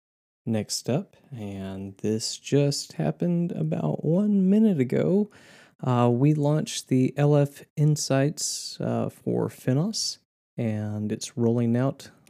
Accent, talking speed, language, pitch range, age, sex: American, 110 wpm, English, 110-140 Hz, 20-39, male